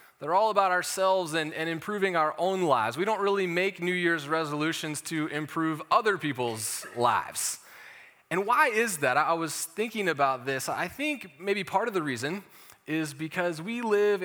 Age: 30-49